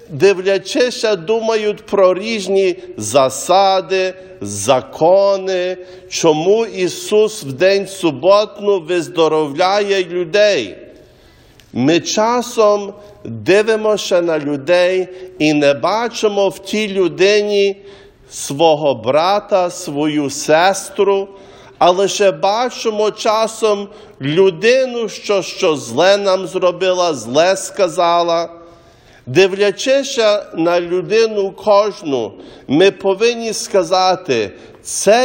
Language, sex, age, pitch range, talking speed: English, male, 50-69, 175-210 Hz, 85 wpm